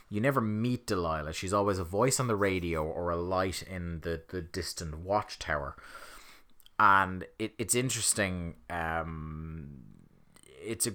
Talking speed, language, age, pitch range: 145 wpm, English, 20-39, 85-100 Hz